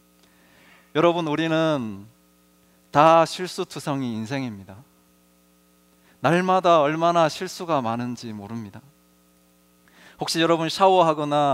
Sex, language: male, Korean